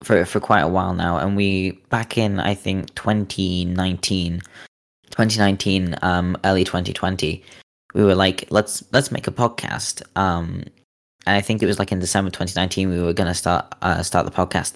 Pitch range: 85-100 Hz